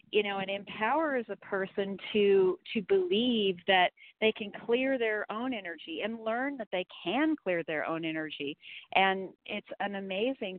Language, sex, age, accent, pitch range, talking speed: English, female, 40-59, American, 180-215 Hz, 165 wpm